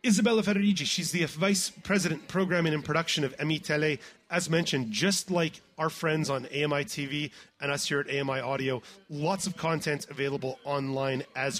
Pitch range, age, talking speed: 135-175 Hz, 30-49, 170 wpm